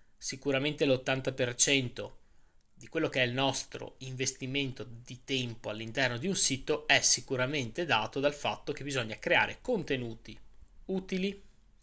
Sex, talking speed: male, 125 wpm